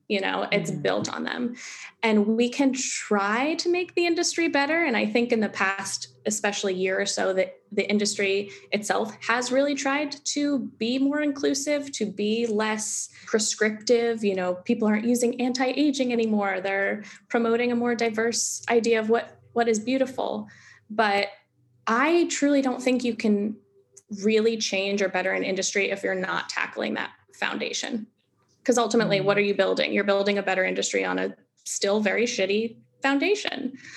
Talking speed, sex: 165 wpm, female